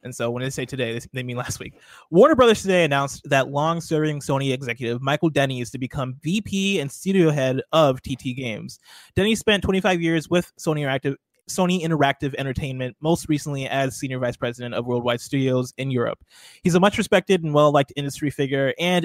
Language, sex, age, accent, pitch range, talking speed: English, male, 20-39, American, 130-170 Hz, 190 wpm